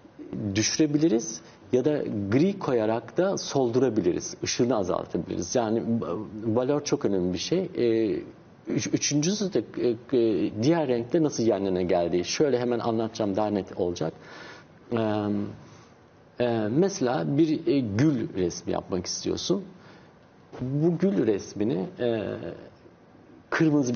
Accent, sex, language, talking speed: native, male, Turkish, 95 wpm